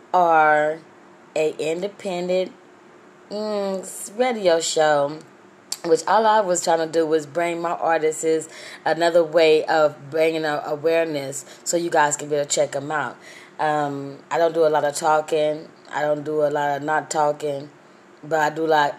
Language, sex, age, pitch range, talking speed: English, female, 20-39, 155-180 Hz, 170 wpm